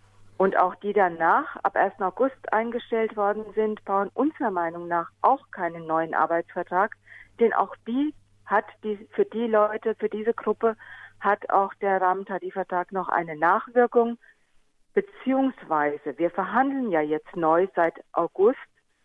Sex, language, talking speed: female, German, 140 wpm